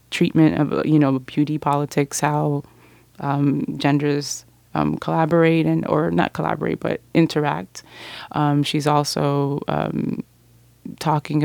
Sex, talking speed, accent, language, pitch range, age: female, 115 wpm, American, English, 140-155 Hz, 20-39